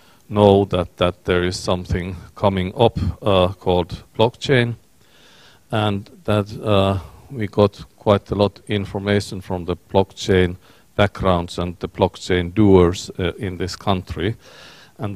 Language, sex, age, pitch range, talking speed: Finnish, male, 50-69, 90-105 Hz, 130 wpm